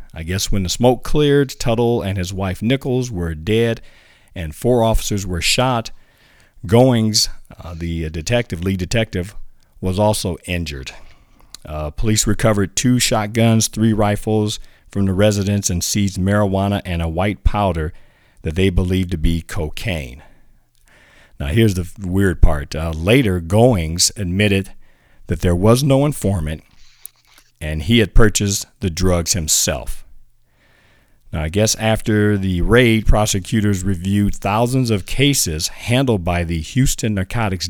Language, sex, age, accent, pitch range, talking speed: English, male, 50-69, American, 85-115 Hz, 140 wpm